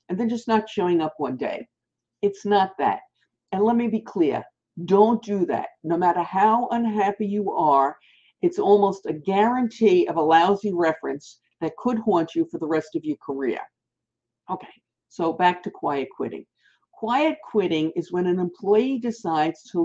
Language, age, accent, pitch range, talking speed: English, 50-69, American, 160-215 Hz, 170 wpm